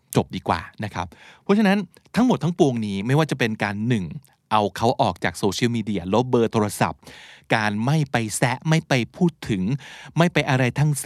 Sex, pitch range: male, 105-150 Hz